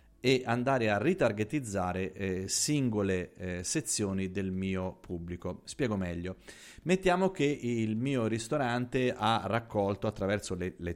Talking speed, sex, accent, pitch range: 125 wpm, male, native, 95-115 Hz